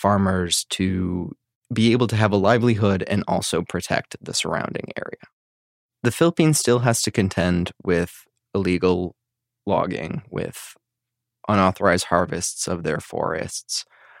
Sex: male